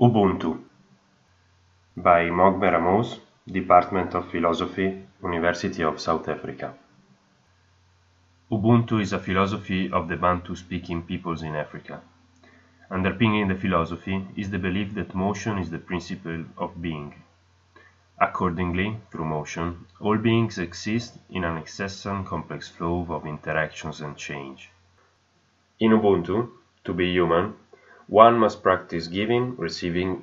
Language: English